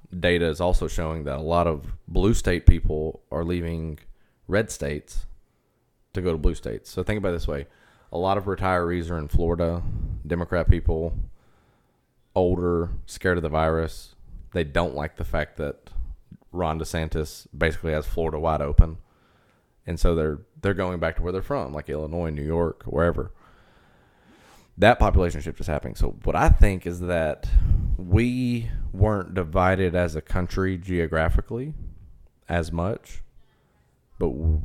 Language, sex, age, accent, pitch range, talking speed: English, male, 20-39, American, 80-95 Hz, 155 wpm